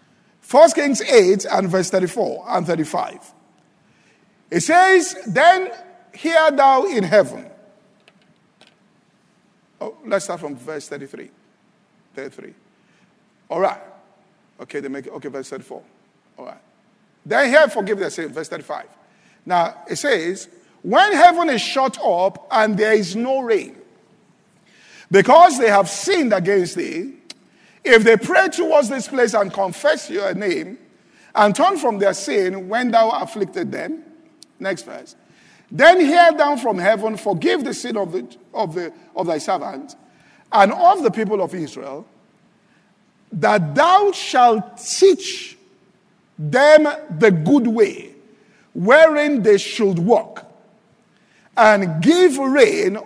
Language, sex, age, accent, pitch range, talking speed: English, male, 50-69, Nigerian, 200-315 Hz, 130 wpm